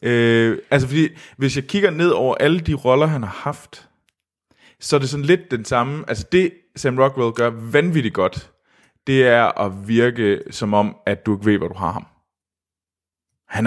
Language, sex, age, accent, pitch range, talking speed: Danish, male, 20-39, native, 100-135 Hz, 190 wpm